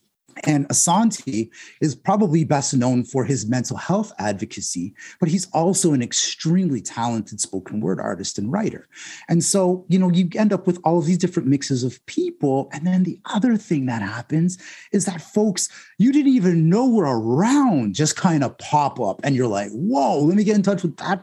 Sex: male